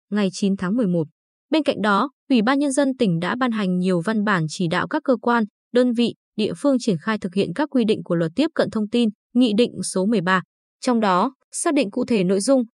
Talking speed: 245 wpm